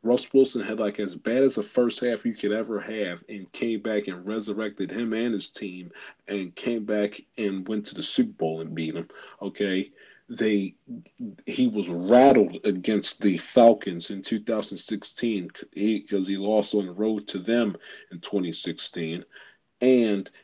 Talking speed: 165 wpm